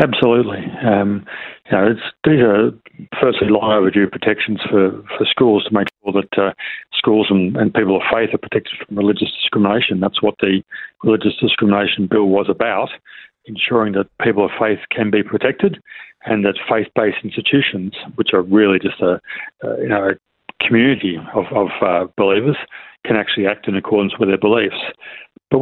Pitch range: 100-130 Hz